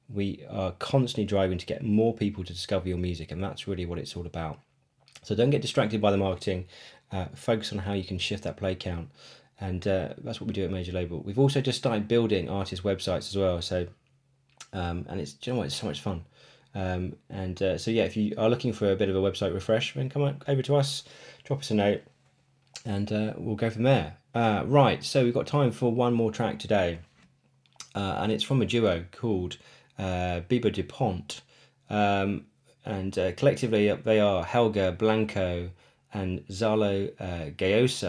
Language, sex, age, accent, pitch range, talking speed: English, male, 20-39, British, 90-115 Hz, 205 wpm